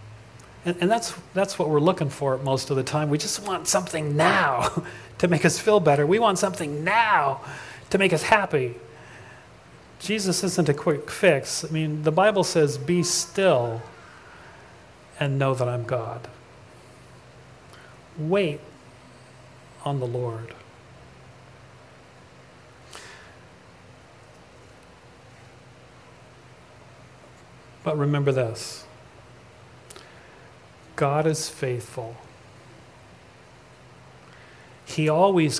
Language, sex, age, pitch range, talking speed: English, male, 40-59, 125-175 Hz, 100 wpm